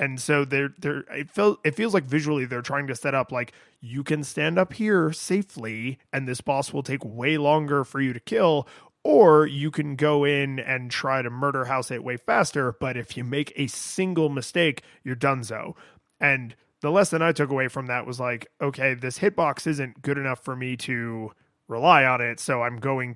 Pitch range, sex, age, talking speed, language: 125-155 Hz, male, 20-39, 205 wpm, English